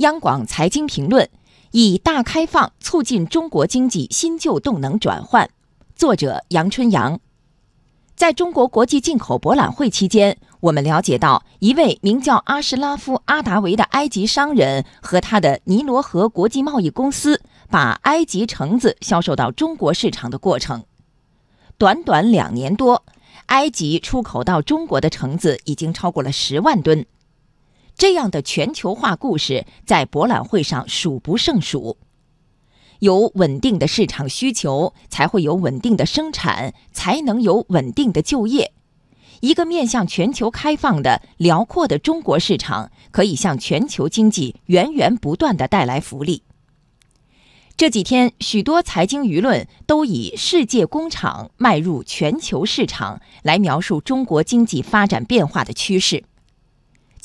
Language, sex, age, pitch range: Chinese, female, 20-39, 165-275 Hz